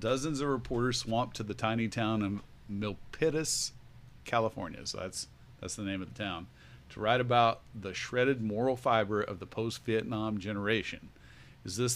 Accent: American